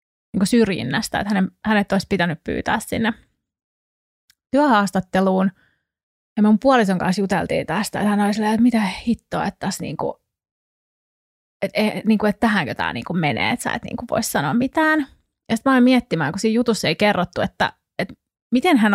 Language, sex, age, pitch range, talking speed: Finnish, female, 20-39, 195-245 Hz, 180 wpm